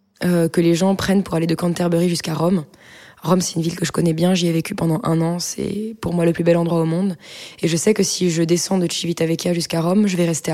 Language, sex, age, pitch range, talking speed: French, female, 20-39, 160-180 Hz, 275 wpm